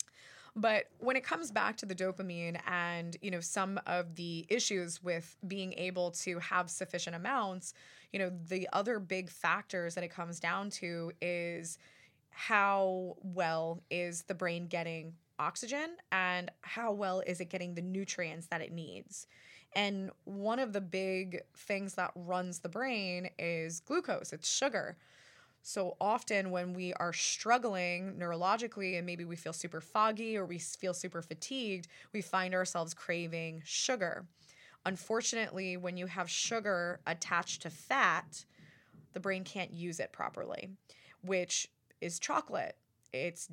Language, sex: English, female